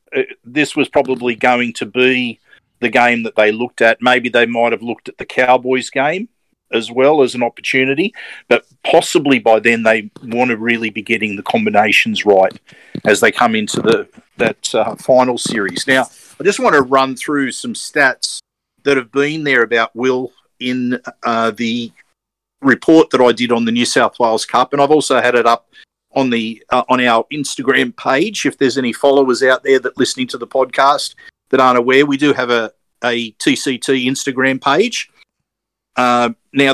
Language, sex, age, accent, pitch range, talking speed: English, male, 50-69, Australian, 120-140 Hz, 185 wpm